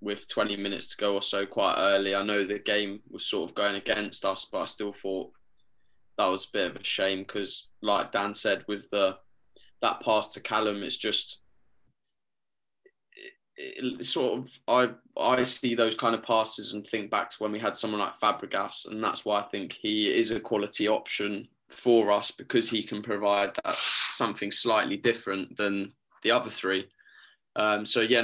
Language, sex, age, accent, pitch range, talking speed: English, male, 10-29, British, 100-120 Hz, 190 wpm